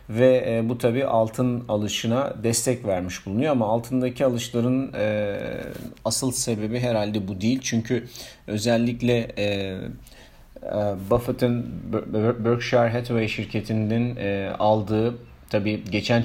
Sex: male